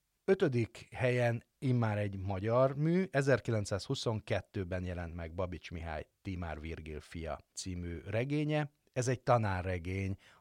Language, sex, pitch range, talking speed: Hungarian, male, 95-125 Hz, 110 wpm